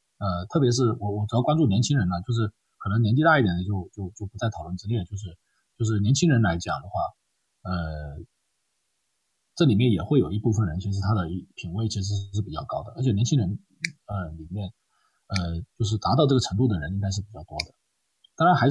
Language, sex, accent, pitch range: Chinese, male, native, 90-125 Hz